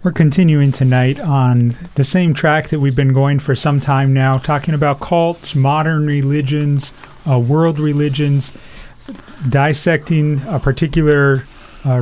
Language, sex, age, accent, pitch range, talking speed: English, male, 30-49, American, 130-165 Hz, 135 wpm